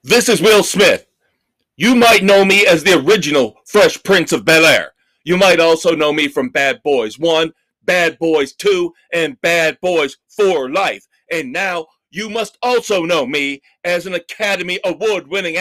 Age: 40-59